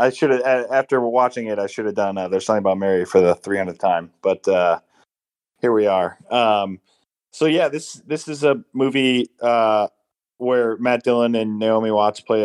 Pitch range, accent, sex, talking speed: 100-125 Hz, American, male, 195 wpm